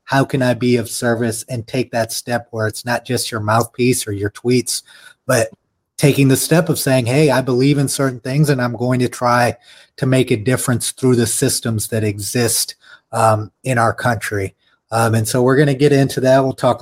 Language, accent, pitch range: English, American, 115-135 Hz